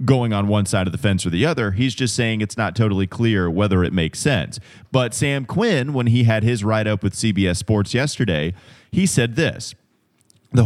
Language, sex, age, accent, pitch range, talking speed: English, male, 30-49, American, 100-125 Hz, 210 wpm